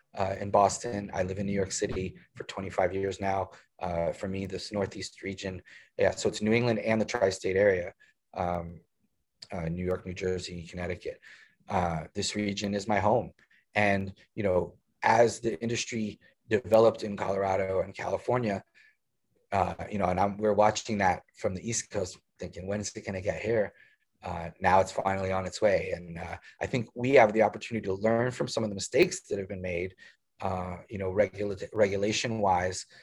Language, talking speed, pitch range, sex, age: English, 185 wpm, 95-110 Hz, male, 30-49